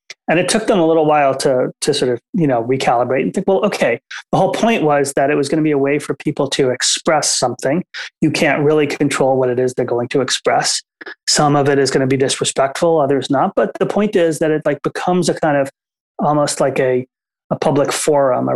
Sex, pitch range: male, 135-175 Hz